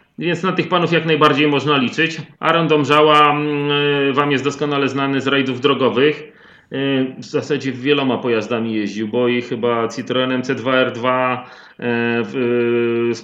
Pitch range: 130-170 Hz